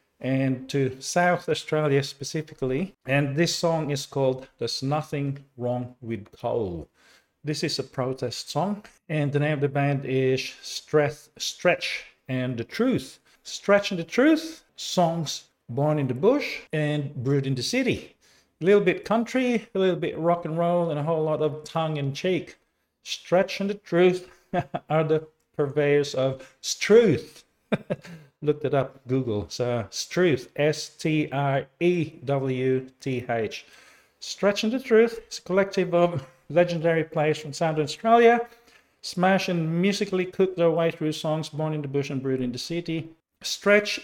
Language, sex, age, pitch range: English, male, 50-69, 135-175 Hz